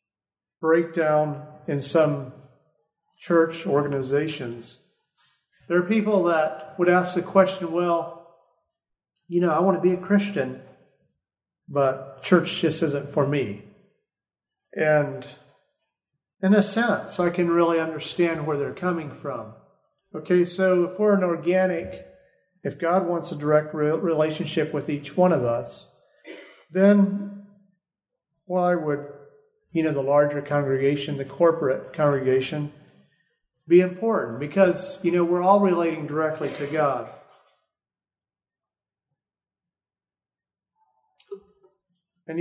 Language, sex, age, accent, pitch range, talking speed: English, male, 40-59, American, 145-180 Hz, 115 wpm